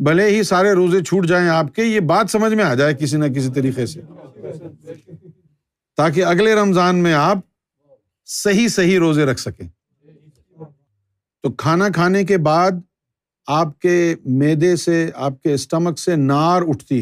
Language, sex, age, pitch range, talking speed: Urdu, male, 50-69, 130-180 Hz, 155 wpm